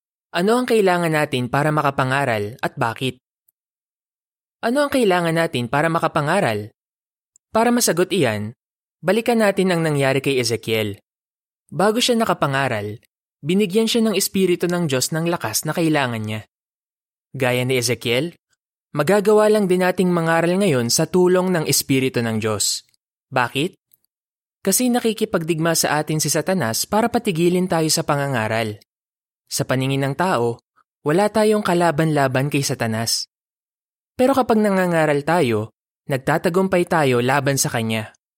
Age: 20-39